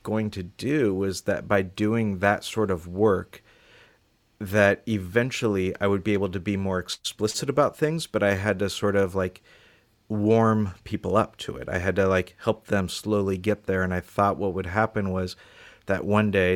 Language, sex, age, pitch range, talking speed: English, male, 40-59, 95-110 Hz, 195 wpm